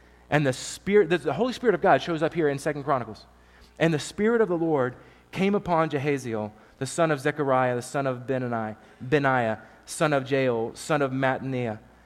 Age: 30-49